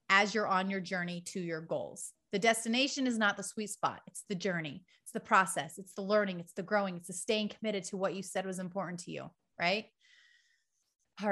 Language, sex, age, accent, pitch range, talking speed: English, female, 30-49, American, 185-225 Hz, 215 wpm